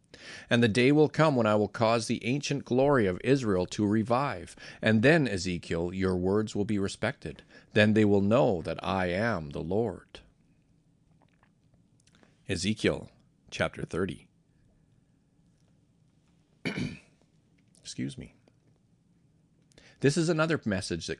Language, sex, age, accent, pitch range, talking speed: English, male, 40-59, American, 100-140 Hz, 120 wpm